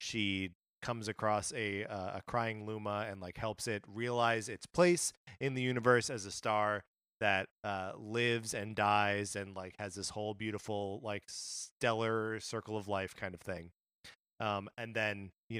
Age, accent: 30-49, American